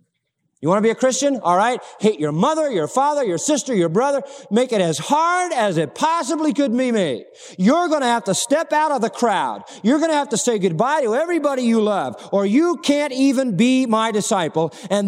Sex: male